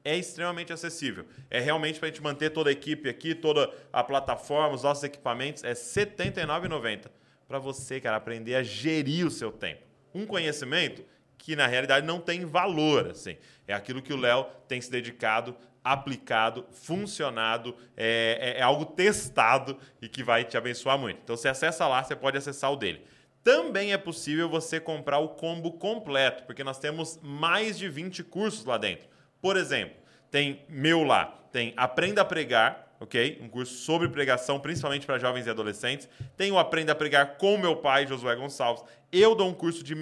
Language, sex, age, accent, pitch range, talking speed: Portuguese, male, 20-39, Brazilian, 130-165 Hz, 180 wpm